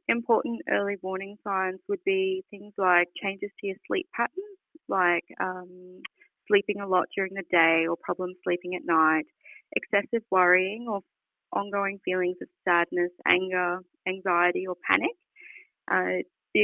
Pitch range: 180-230 Hz